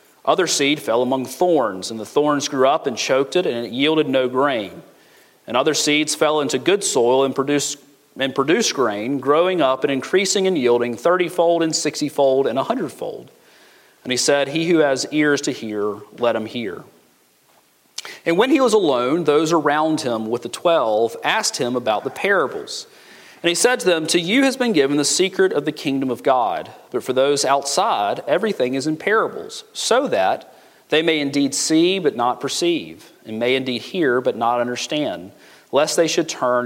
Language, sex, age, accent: English, male, 40-59, American